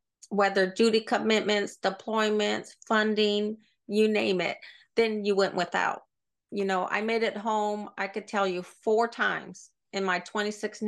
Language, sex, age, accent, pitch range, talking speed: English, female, 40-59, American, 185-215 Hz, 155 wpm